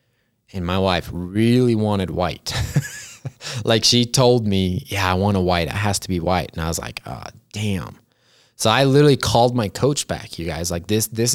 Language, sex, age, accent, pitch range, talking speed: English, male, 20-39, American, 95-115 Hz, 200 wpm